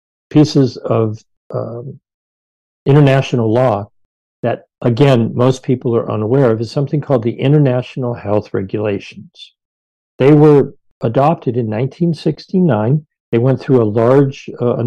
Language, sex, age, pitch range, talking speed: English, male, 50-69, 115-150 Hz, 120 wpm